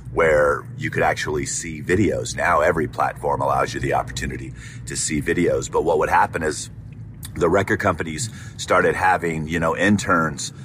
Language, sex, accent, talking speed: English, male, American, 165 wpm